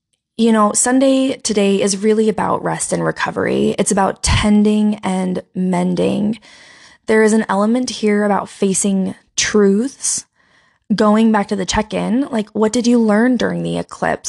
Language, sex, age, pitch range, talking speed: English, female, 20-39, 200-235 Hz, 150 wpm